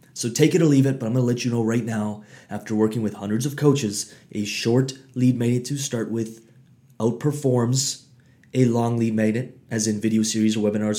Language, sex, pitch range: English, male, 110-135 Hz